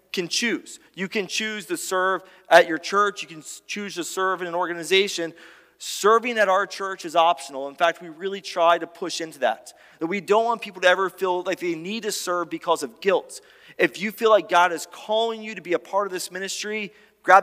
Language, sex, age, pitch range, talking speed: English, male, 30-49, 170-215 Hz, 225 wpm